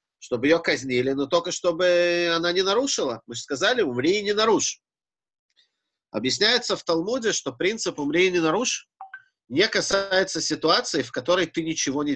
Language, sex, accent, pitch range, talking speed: Russian, male, native, 125-190 Hz, 165 wpm